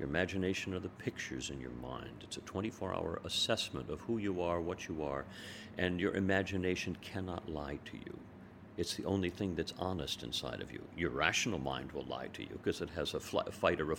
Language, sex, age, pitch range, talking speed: English, male, 50-69, 80-100 Hz, 210 wpm